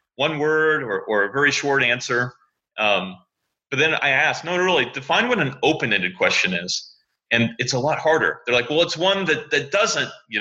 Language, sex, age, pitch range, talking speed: English, male, 30-49, 115-160 Hz, 200 wpm